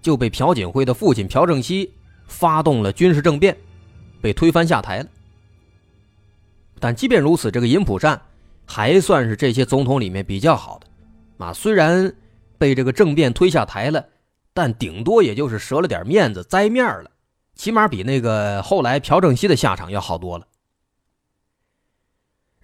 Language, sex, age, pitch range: Chinese, male, 20-39, 100-155 Hz